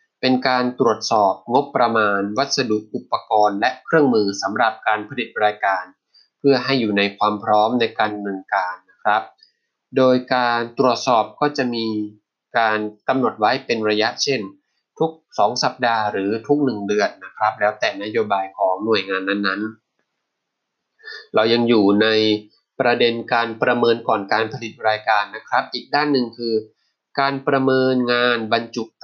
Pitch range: 105-130 Hz